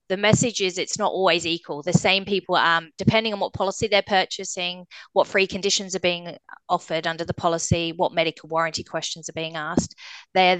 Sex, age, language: female, 20-39, English